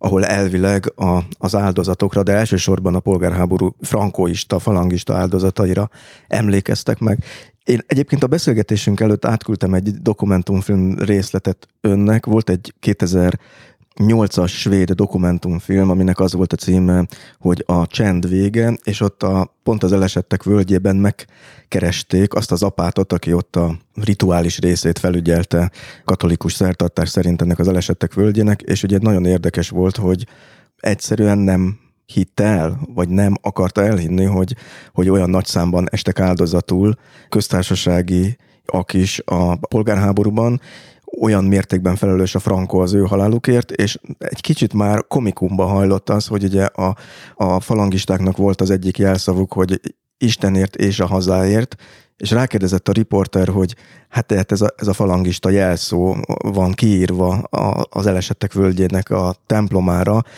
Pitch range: 90-105 Hz